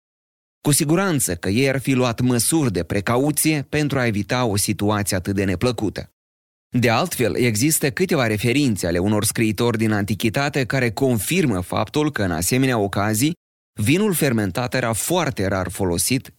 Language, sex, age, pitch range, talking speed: Romanian, male, 30-49, 100-140 Hz, 150 wpm